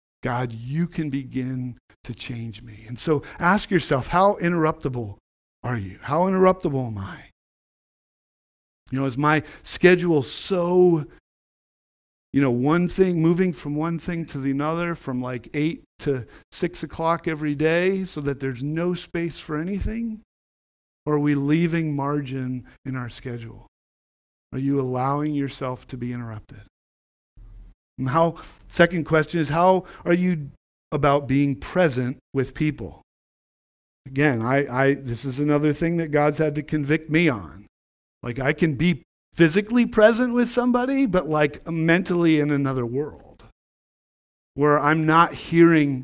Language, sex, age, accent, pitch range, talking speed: English, male, 50-69, American, 125-165 Hz, 145 wpm